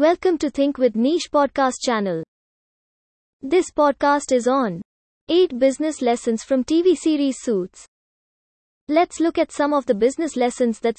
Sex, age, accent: female, 20-39, Indian